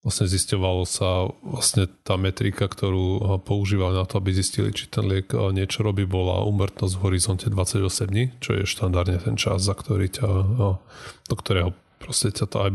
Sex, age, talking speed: male, 30-49, 175 wpm